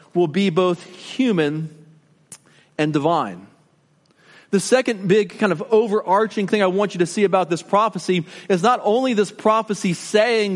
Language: English